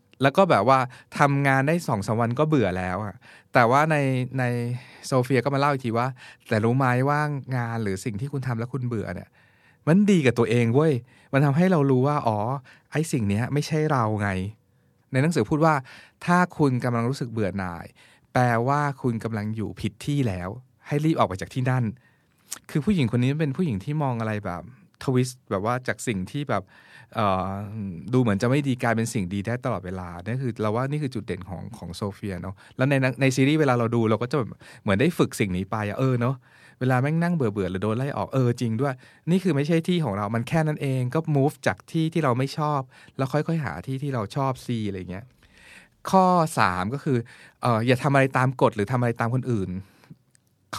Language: Thai